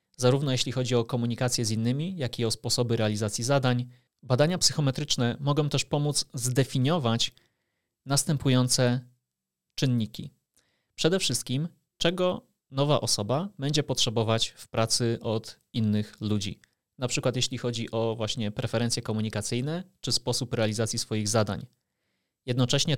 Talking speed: 125 wpm